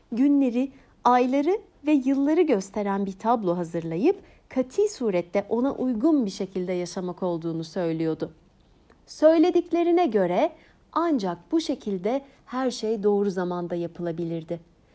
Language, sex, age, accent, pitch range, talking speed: Turkish, female, 60-79, native, 185-295 Hz, 110 wpm